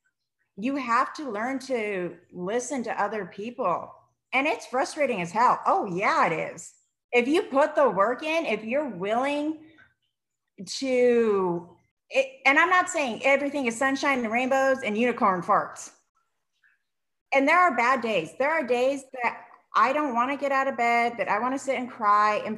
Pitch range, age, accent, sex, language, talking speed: 195-255 Hz, 30-49, American, female, English, 175 wpm